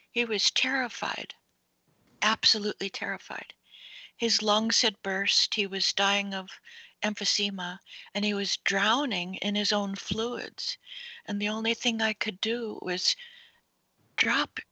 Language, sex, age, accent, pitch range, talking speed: English, female, 60-79, American, 210-260 Hz, 125 wpm